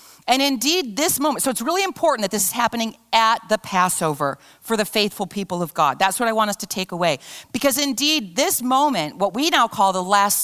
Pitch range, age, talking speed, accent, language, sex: 190-265 Hz, 40-59, 225 wpm, American, English, female